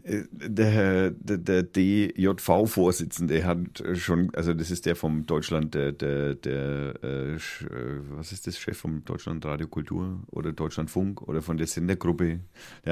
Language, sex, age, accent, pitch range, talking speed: German, male, 40-59, German, 75-100 Hz, 145 wpm